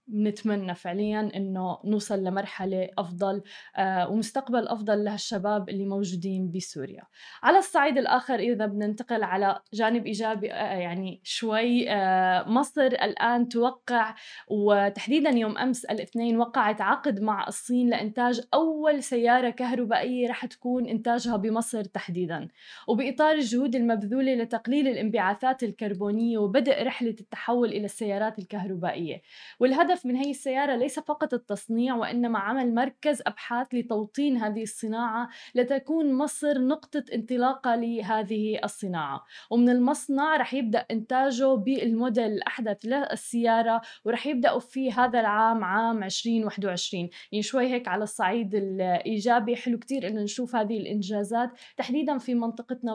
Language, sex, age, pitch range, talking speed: Arabic, female, 20-39, 210-250 Hz, 120 wpm